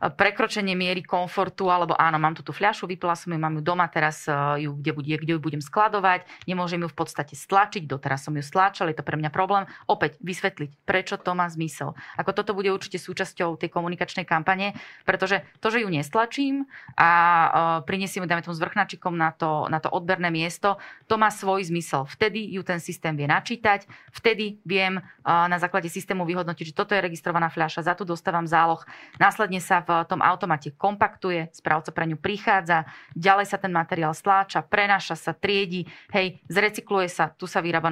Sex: female